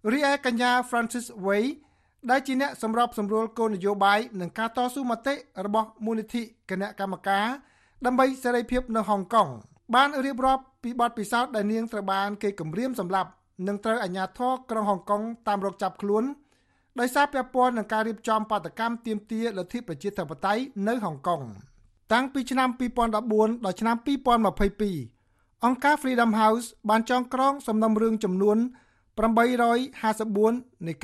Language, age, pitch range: English, 60-79, 200-245 Hz